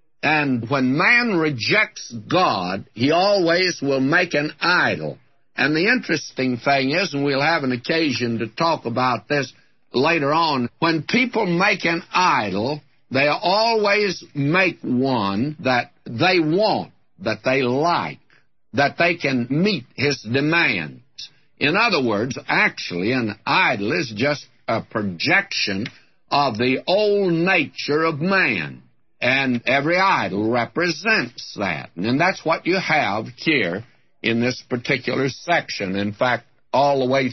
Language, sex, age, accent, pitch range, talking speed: English, male, 60-79, American, 120-165 Hz, 135 wpm